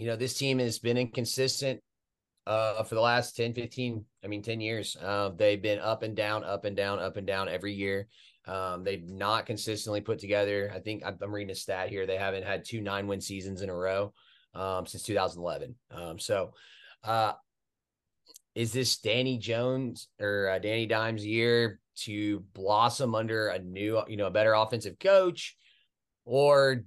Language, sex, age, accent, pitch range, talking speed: English, male, 30-49, American, 100-125 Hz, 180 wpm